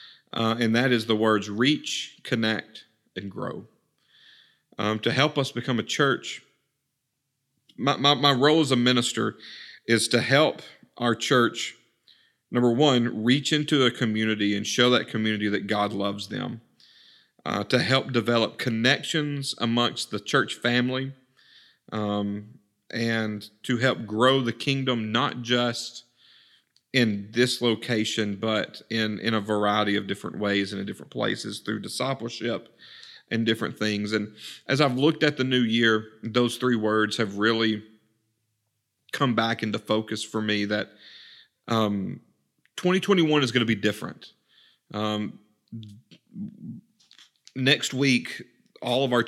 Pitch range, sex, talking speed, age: 105-125 Hz, male, 140 wpm, 40-59